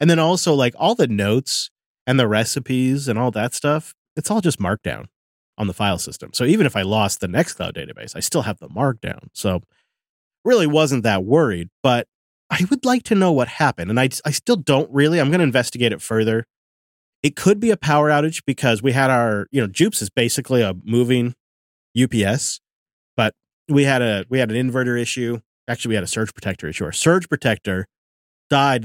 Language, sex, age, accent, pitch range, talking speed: English, male, 30-49, American, 105-150 Hz, 205 wpm